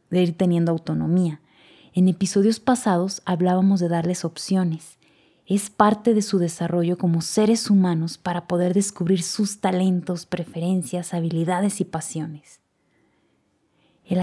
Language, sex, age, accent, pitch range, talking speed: Spanish, female, 20-39, Mexican, 165-200 Hz, 120 wpm